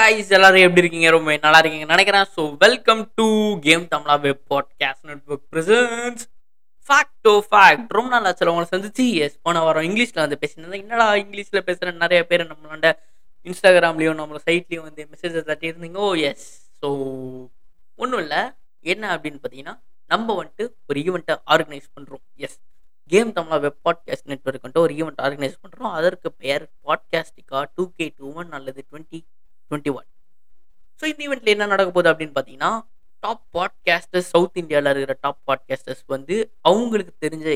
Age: 20-39